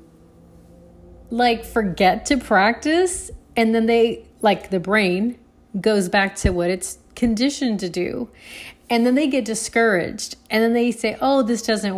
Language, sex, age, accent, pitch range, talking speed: English, female, 30-49, American, 200-255 Hz, 150 wpm